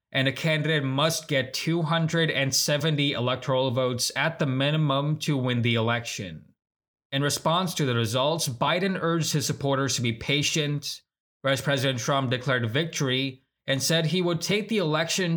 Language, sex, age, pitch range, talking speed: English, male, 20-39, 125-155 Hz, 150 wpm